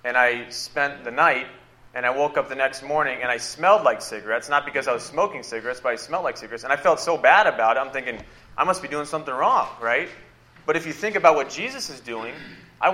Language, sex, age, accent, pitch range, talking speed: English, male, 30-49, American, 125-170 Hz, 250 wpm